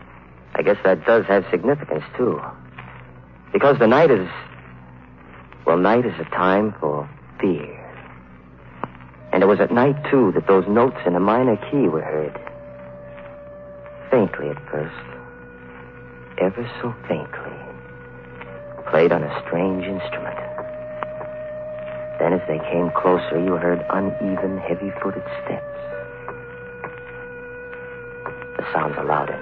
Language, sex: English, male